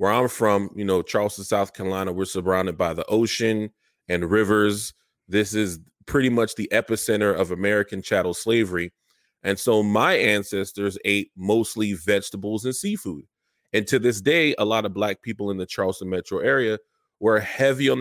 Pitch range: 95-115 Hz